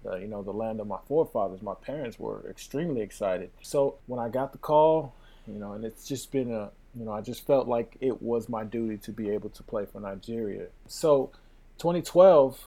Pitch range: 120-155 Hz